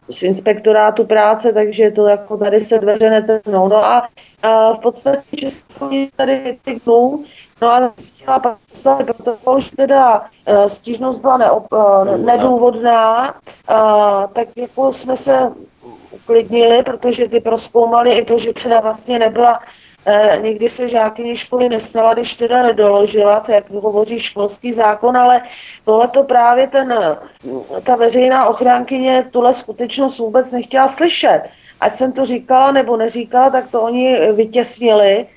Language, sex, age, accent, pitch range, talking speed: Czech, female, 30-49, native, 220-260 Hz, 140 wpm